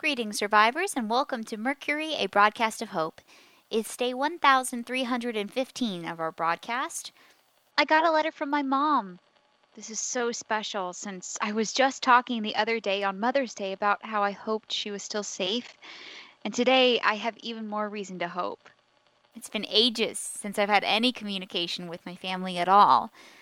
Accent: American